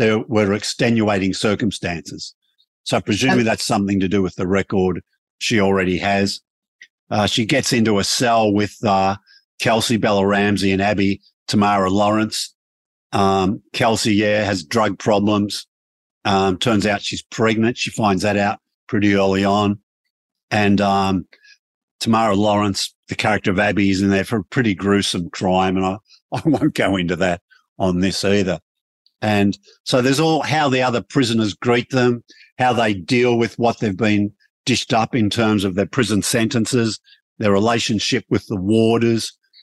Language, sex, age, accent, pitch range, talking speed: English, male, 50-69, Australian, 100-120 Hz, 160 wpm